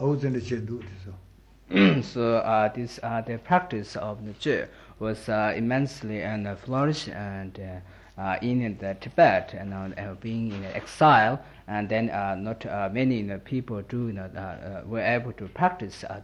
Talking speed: 170 wpm